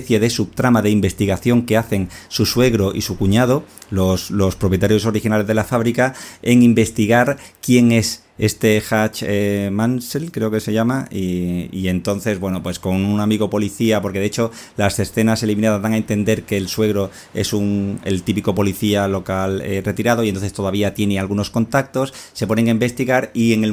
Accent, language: Spanish, Spanish